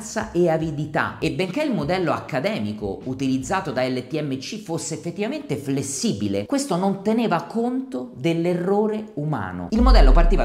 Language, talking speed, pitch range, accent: Italian, 125 wpm, 140-205 Hz, native